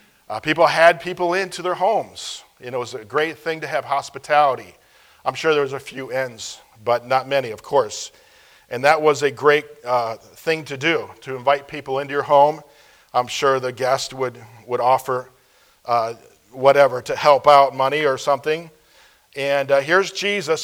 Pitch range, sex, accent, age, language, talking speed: 135-165 Hz, male, American, 40-59, English, 180 wpm